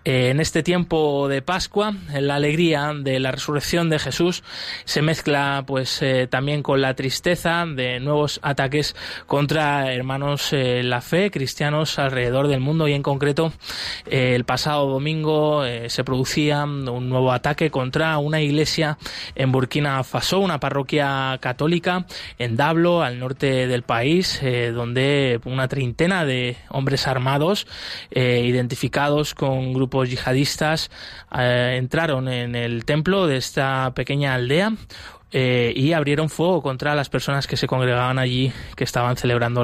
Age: 20-39